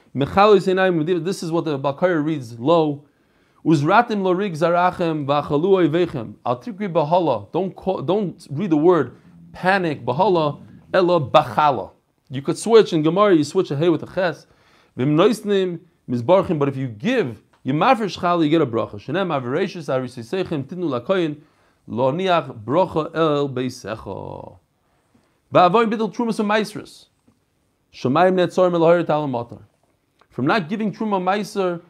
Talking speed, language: 75 wpm, English